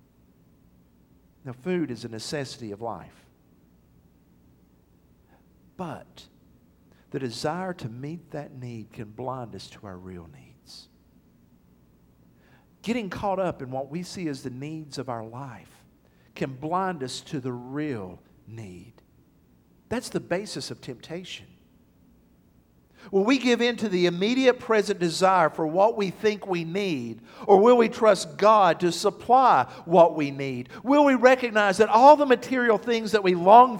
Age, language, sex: 50-69, English, male